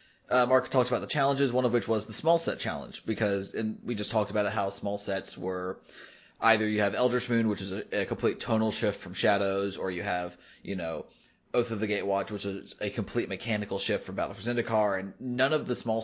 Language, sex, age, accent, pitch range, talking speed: English, male, 20-39, American, 100-115 Hz, 235 wpm